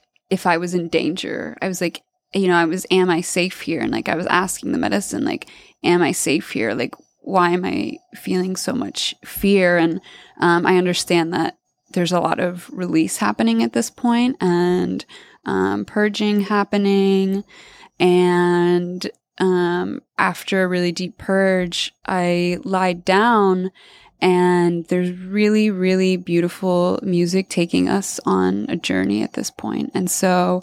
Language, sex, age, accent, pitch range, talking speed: English, female, 20-39, American, 175-195 Hz, 155 wpm